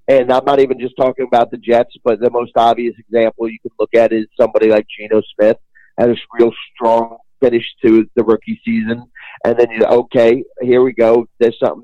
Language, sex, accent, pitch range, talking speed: English, male, American, 115-140 Hz, 210 wpm